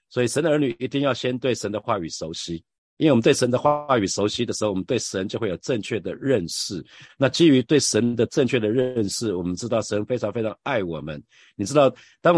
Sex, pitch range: male, 95-125 Hz